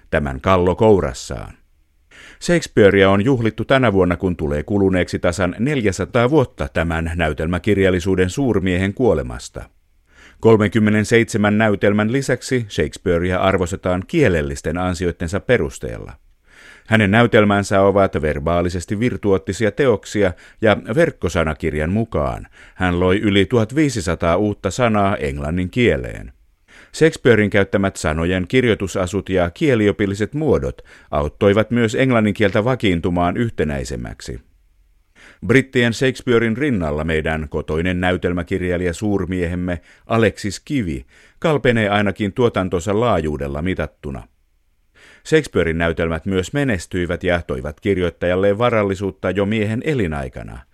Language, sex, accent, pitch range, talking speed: Finnish, male, native, 85-105 Hz, 95 wpm